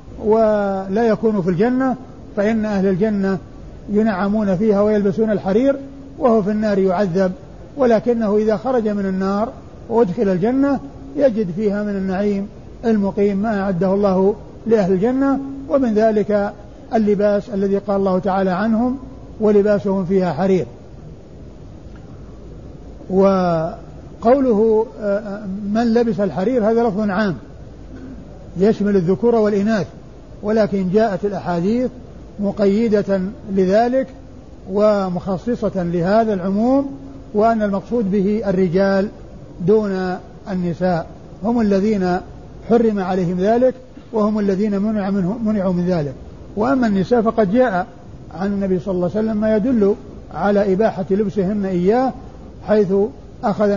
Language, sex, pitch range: Arabic, male, 190-220 Hz